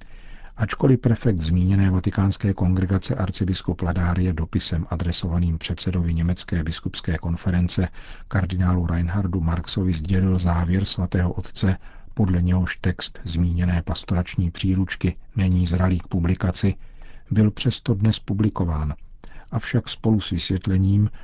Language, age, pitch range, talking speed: Czech, 50-69, 85-100 Hz, 105 wpm